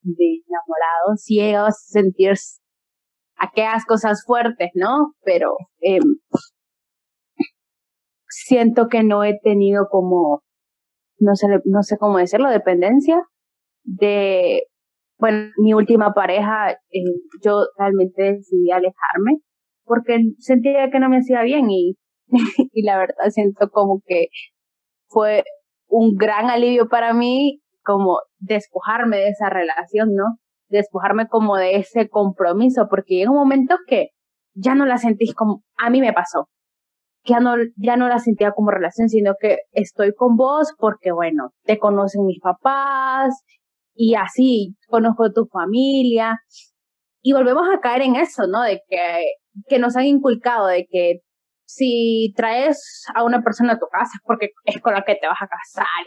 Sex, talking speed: female, 150 wpm